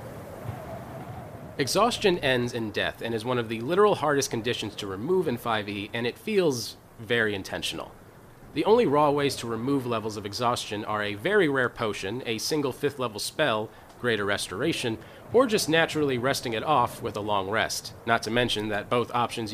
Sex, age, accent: male, 30-49, American